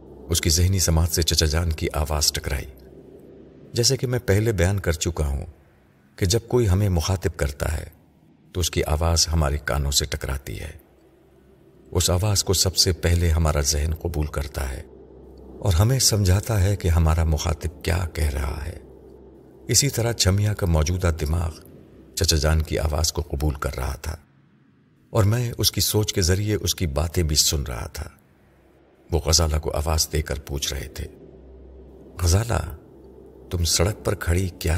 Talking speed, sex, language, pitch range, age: 175 wpm, male, Urdu, 75-95 Hz, 50-69